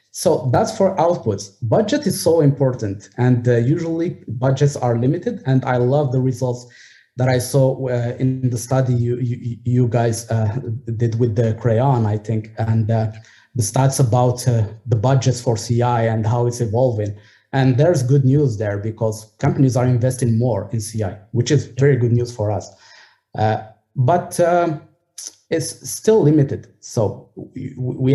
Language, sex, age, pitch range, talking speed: English, male, 20-39, 110-130 Hz, 165 wpm